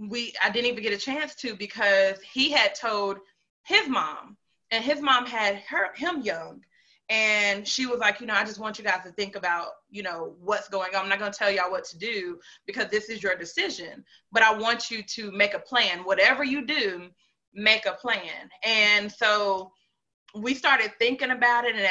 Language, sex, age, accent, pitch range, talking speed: English, female, 20-39, American, 205-255 Hz, 205 wpm